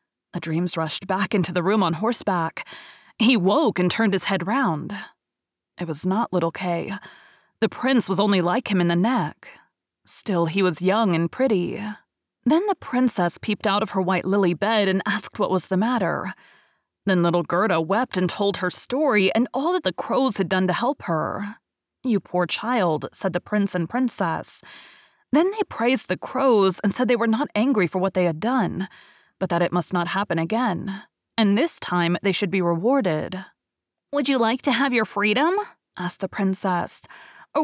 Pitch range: 180-250 Hz